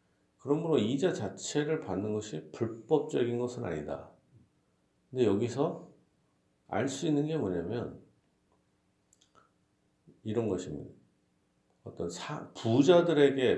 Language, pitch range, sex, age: Korean, 95-140 Hz, male, 50-69